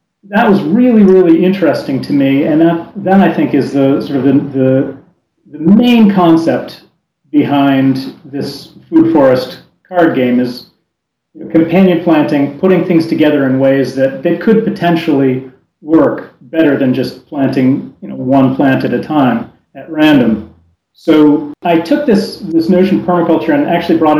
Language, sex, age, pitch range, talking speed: English, male, 40-59, 135-180 Hz, 160 wpm